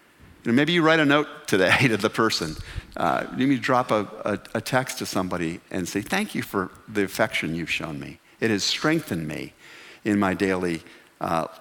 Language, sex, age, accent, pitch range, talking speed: English, male, 50-69, American, 100-135 Hz, 190 wpm